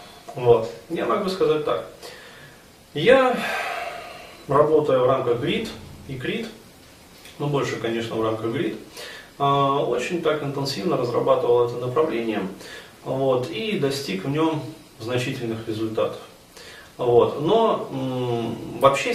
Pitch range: 110-140 Hz